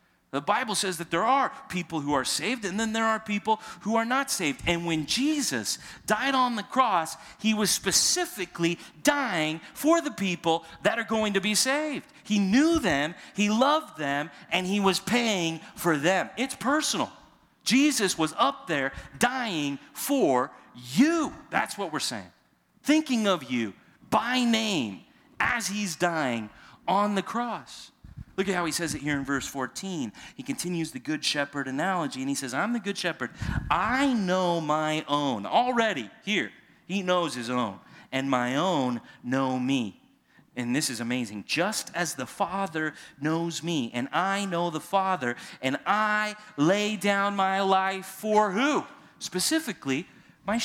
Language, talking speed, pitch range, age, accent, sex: English, 165 wpm, 150-225 Hz, 40-59, American, male